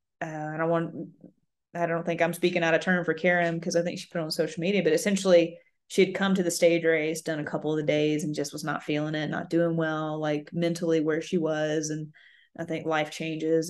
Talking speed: 245 wpm